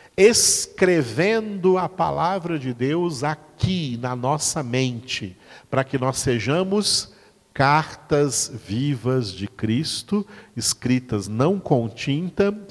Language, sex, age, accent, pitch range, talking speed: Portuguese, male, 50-69, Brazilian, 115-160 Hz, 100 wpm